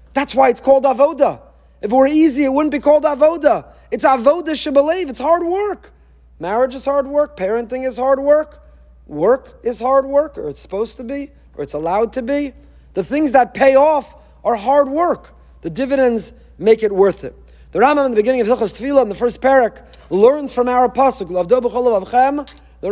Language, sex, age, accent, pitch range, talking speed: English, male, 30-49, American, 240-290 Hz, 190 wpm